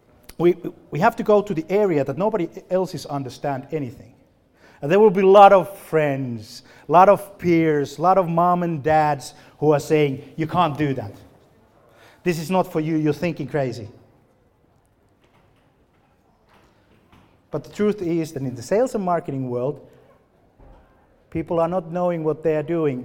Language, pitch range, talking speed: Finnish, 115-160 Hz, 170 wpm